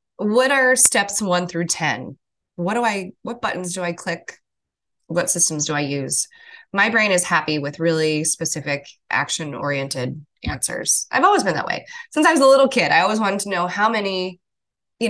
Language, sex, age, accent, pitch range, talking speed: English, female, 20-39, American, 165-235 Hz, 190 wpm